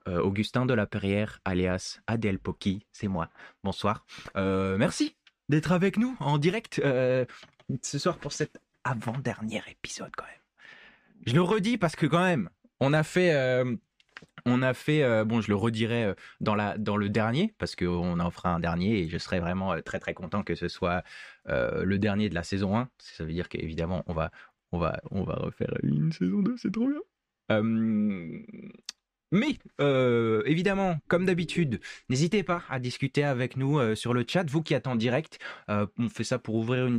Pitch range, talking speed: 100-155 Hz, 195 wpm